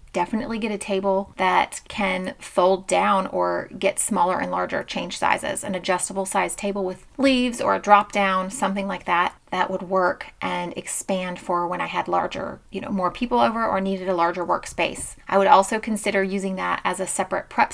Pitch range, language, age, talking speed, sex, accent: 185-215 Hz, English, 30-49, 195 wpm, female, American